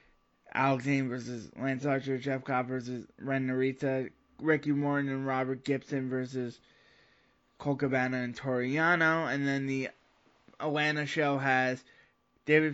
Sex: male